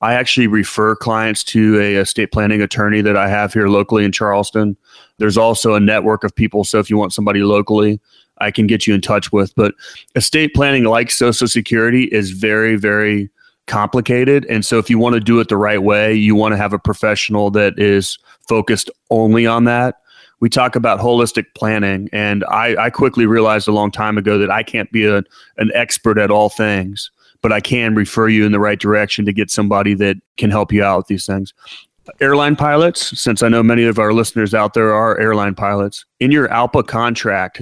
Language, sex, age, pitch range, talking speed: English, male, 30-49, 105-115 Hz, 205 wpm